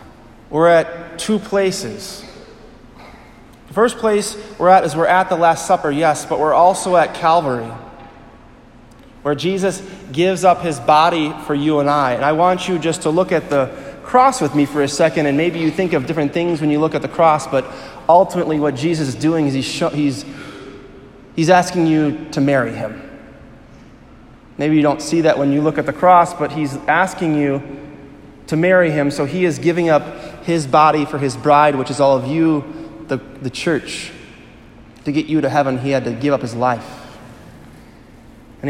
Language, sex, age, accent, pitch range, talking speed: English, male, 30-49, American, 135-160 Hz, 190 wpm